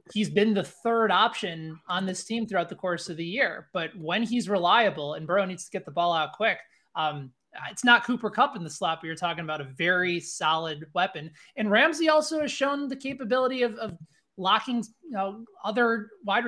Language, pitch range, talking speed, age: English, 155-210 Hz, 200 wpm, 20-39